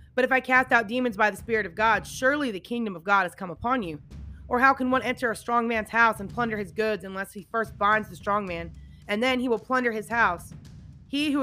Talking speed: 255 wpm